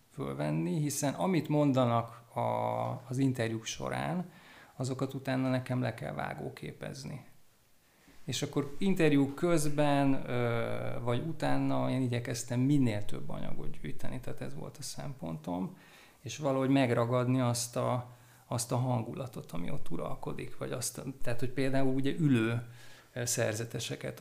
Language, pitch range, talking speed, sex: Hungarian, 115-135 Hz, 125 wpm, male